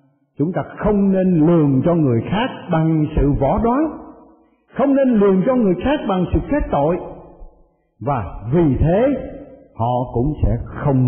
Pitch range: 110-180 Hz